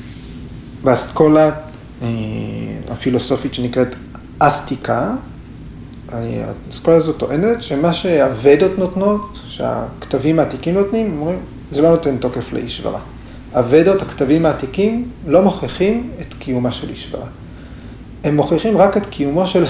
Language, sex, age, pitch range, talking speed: Hebrew, male, 30-49, 125-160 Hz, 105 wpm